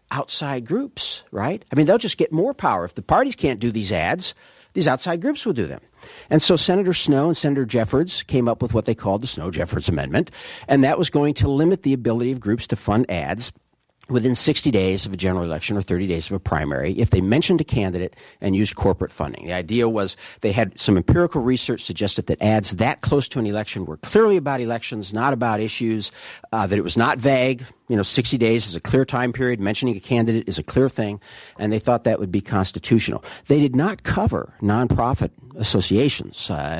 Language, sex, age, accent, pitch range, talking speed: English, male, 50-69, American, 95-130 Hz, 215 wpm